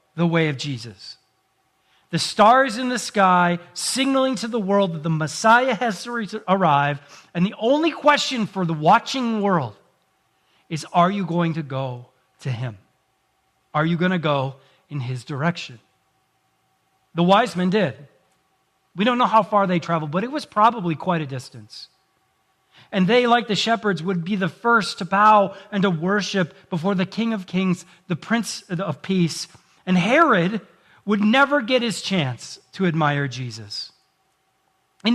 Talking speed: 160 wpm